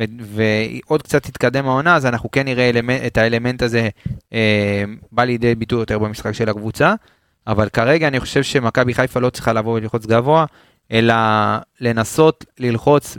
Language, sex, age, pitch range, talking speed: Hebrew, male, 20-39, 115-140 Hz, 160 wpm